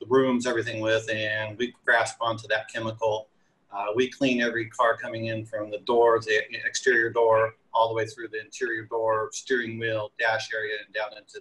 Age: 30-49